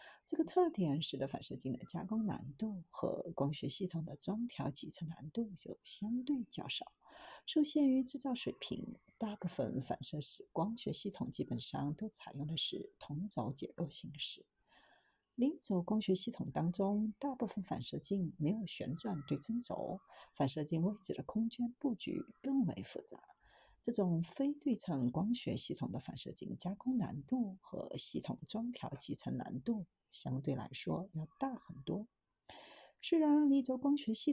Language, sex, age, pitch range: Chinese, female, 50-69, 160-240 Hz